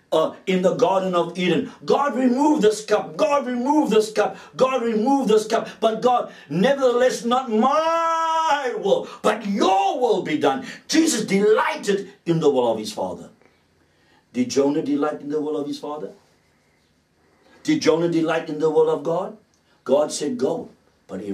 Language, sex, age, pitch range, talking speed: English, male, 60-79, 160-260 Hz, 165 wpm